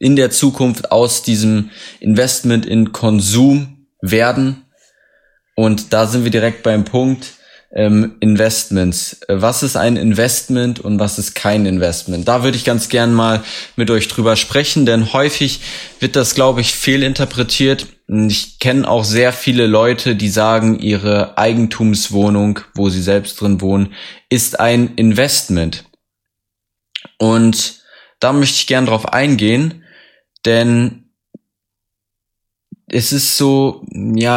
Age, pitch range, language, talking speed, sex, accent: 20-39, 100-120 Hz, German, 130 wpm, male, German